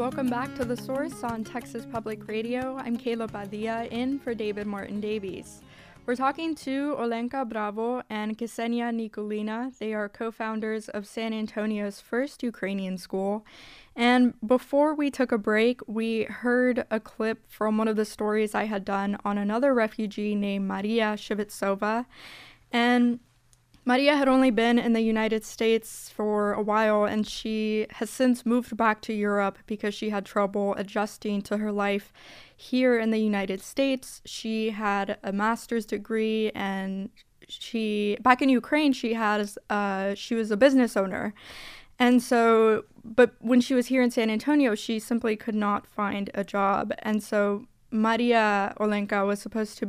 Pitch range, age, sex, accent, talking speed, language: 210-240 Hz, 10-29, female, American, 160 wpm, English